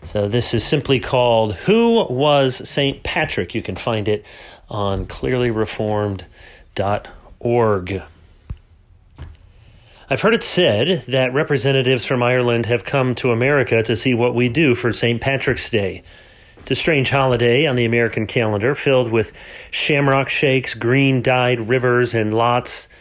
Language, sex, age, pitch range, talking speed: English, male, 30-49, 110-135 Hz, 135 wpm